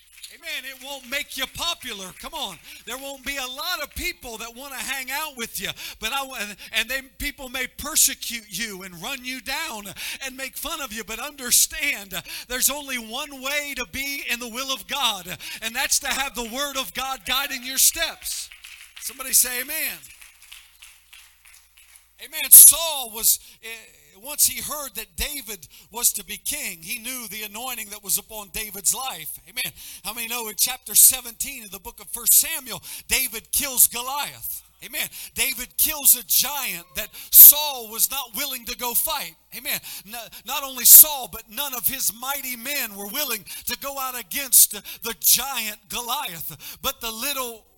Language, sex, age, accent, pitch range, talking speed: English, male, 50-69, American, 220-275 Hz, 175 wpm